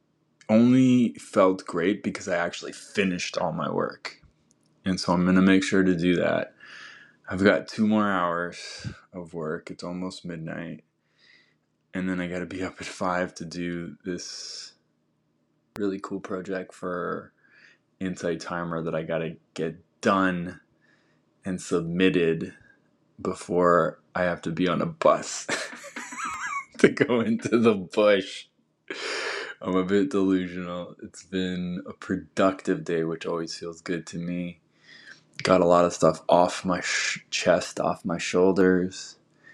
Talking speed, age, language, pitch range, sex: 145 wpm, 20-39, English, 85-95 Hz, male